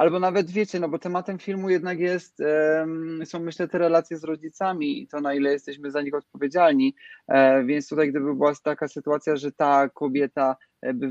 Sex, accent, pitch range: male, native, 135-155 Hz